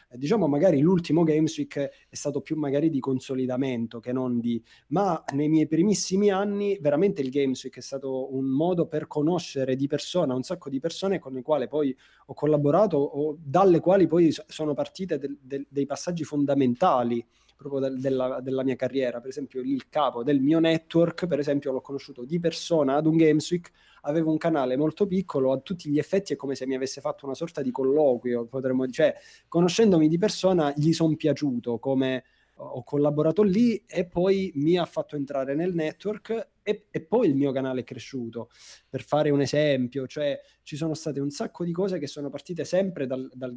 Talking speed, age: 195 wpm, 20-39